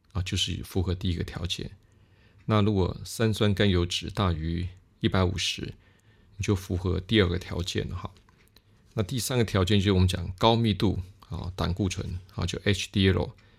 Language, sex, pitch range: Chinese, male, 90-105 Hz